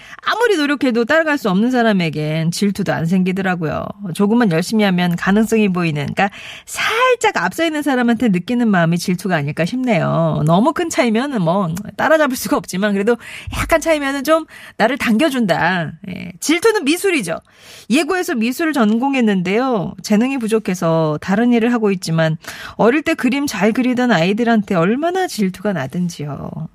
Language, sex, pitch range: Korean, female, 180-250 Hz